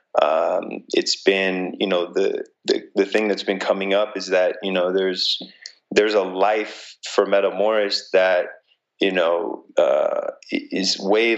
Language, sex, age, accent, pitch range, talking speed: English, male, 20-39, American, 95-105 Hz, 155 wpm